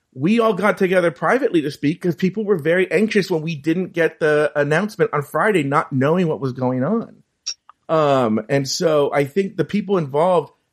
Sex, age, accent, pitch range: male, 40-59, American, 135-185 Hz